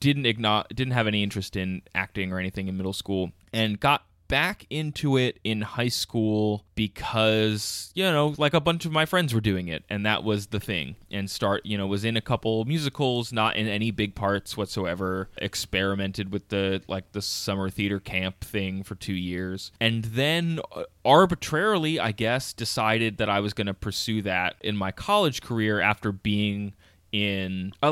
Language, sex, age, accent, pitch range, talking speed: English, male, 20-39, American, 95-120 Hz, 185 wpm